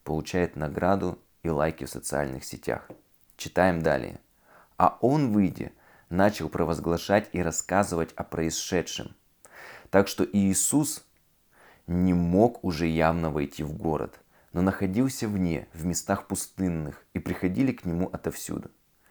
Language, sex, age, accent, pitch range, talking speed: Russian, male, 20-39, native, 80-100 Hz, 120 wpm